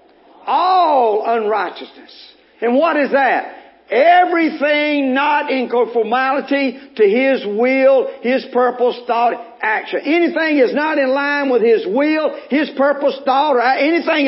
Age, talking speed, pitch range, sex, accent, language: 50-69, 125 wpm, 255-385 Hz, male, American, English